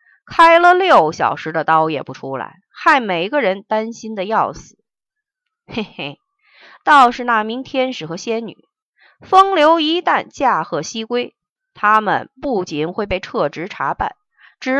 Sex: female